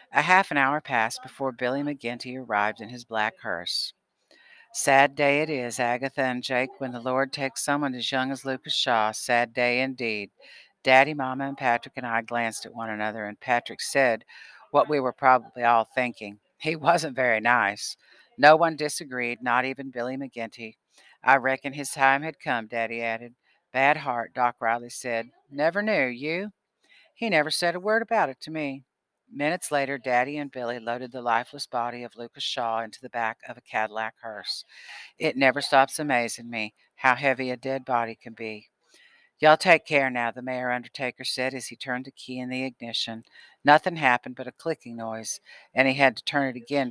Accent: American